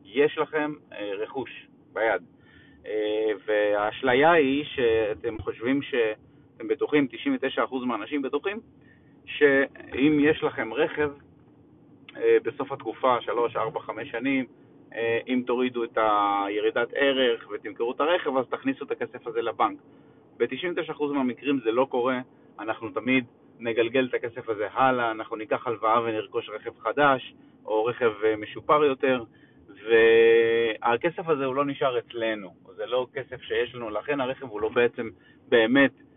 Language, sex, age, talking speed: Hebrew, male, 30-49, 125 wpm